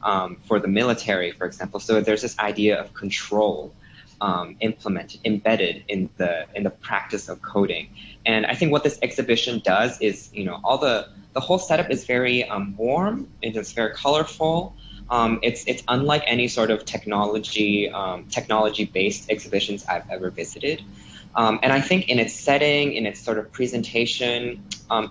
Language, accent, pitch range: English, American, 105-130 Hz